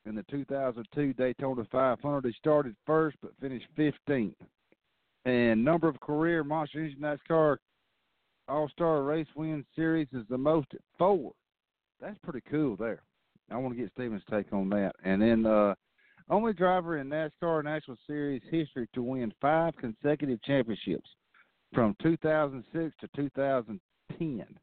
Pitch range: 115-150 Hz